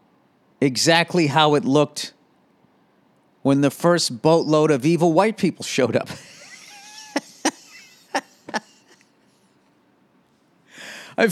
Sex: male